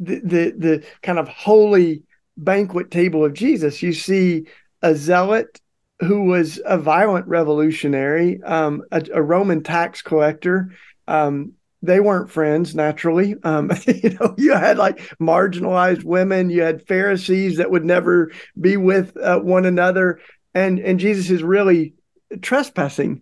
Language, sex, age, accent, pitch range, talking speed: English, male, 50-69, American, 160-190 Hz, 140 wpm